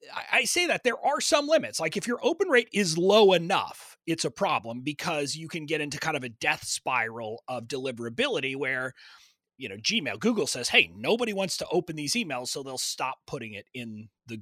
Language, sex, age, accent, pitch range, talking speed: English, male, 30-49, American, 120-205 Hz, 210 wpm